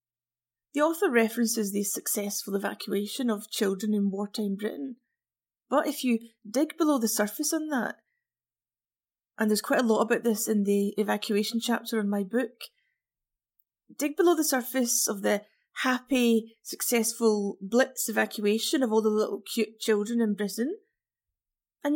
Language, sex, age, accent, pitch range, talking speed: English, female, 30-49, British, 220-280 Hz, 145 wpm